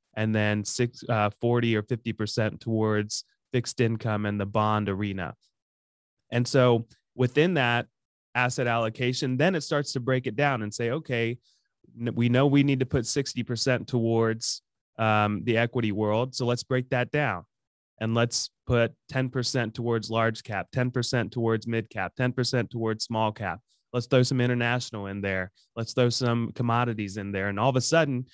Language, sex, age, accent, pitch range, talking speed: English, male, 30-49, American, 110-130 Hz, 165 wpm